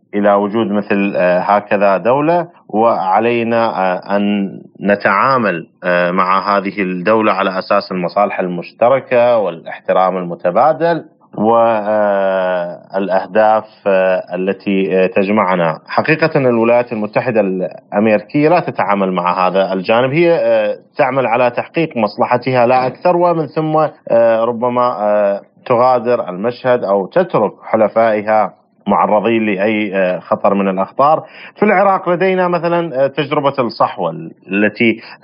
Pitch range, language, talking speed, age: 100-130 Hz, Arabic, 95 wpm, 30-49